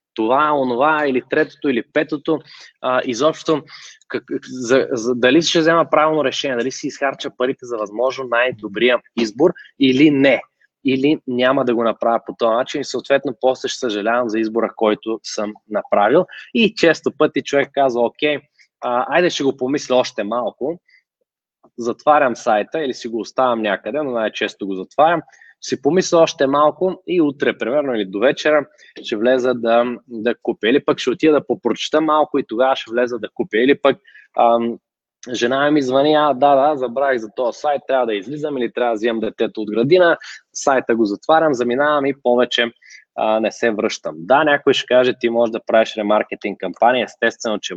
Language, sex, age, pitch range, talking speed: Bulgarian, male, 20-39, 115-150 Hz, 175 wpm